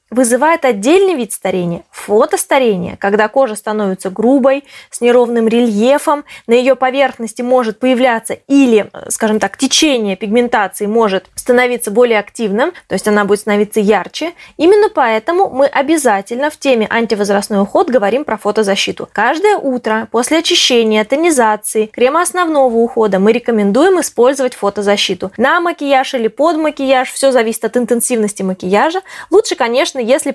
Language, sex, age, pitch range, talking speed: Russian, female, 20-39, 215-275 Hz, 135 wpm